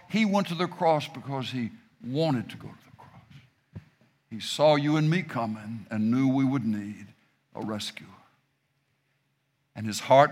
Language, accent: English, American